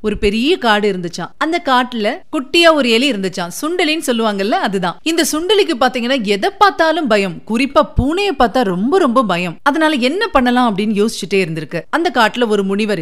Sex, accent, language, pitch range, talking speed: female, native, Tamil, 190-275 Hz, 160 wpm